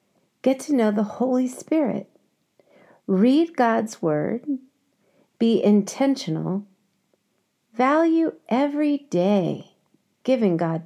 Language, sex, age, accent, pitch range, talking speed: English, female, 50-69, American, 190-270 Hz, 90 wpm